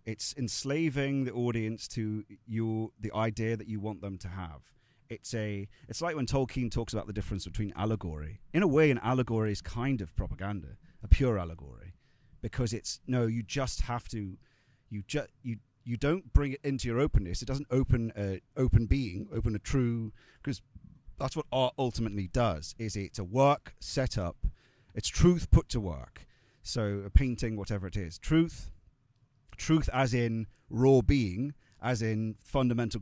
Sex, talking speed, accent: male, 175 wpm, British